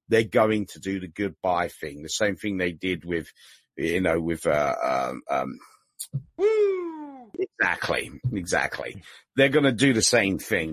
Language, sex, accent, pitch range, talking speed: English, male, British, 85-105 Hz, 155 wpm